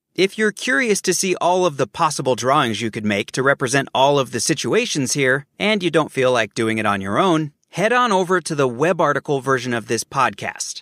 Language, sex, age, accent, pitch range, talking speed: English, male, 30-49, American, 145-200 Hz, 225 wpm